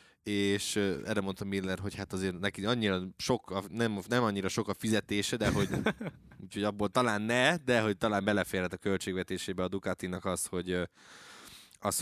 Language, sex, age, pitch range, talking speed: Hungarian, male, 20-39, 95-110 Hz, 160 wpm